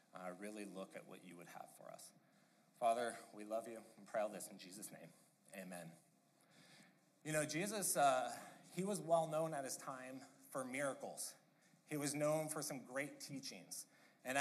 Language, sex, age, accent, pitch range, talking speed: English, male, 30-49, American, 130-160 Hz, 180 wpm